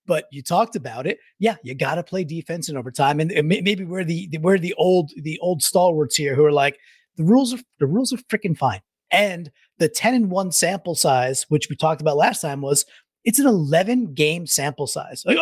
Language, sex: English, male